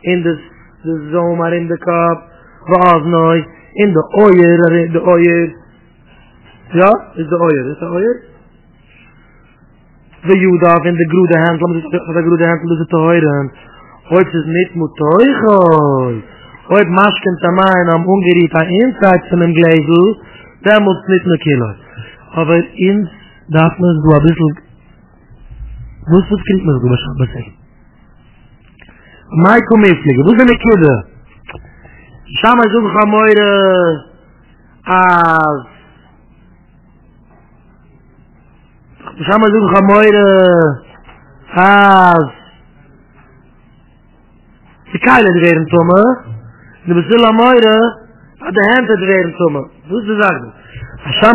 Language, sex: English, male